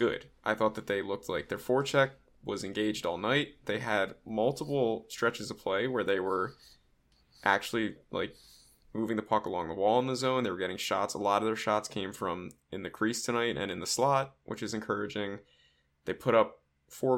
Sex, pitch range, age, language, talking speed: male, 100-135 Hz, 10-29, English, 205 wpm